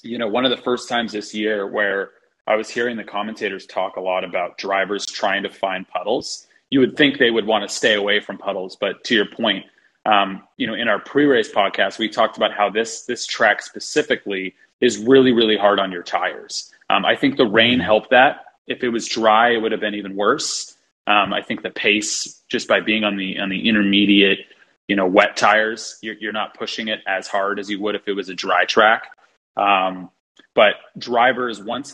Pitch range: 100-115 Hz